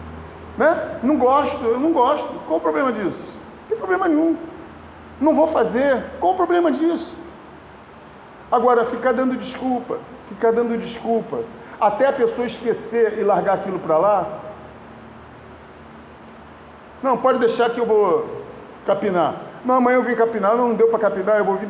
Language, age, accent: Portuguese, 40-59, Brazilian